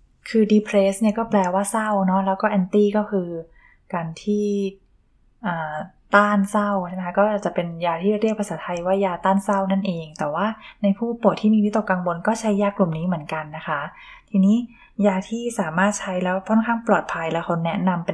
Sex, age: female, 20-39